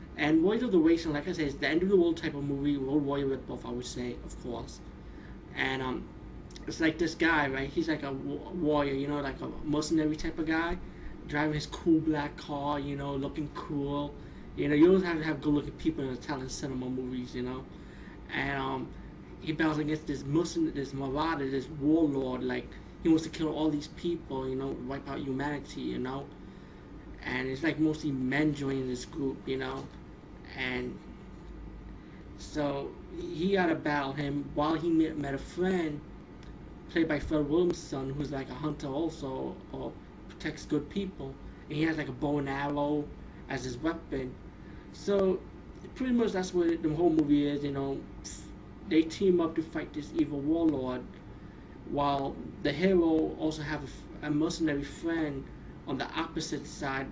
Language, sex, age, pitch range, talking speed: English, male, 20-39, 135-160 Hz, 180 wpm